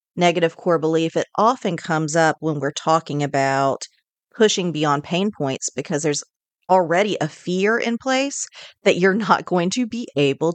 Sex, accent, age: female, American, 40-59